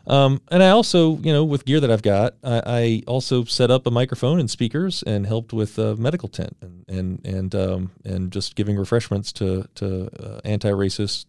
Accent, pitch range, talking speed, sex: American, 95-125 Hz, 200 wpm, male